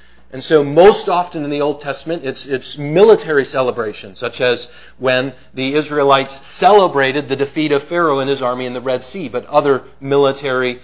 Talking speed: 175 wpm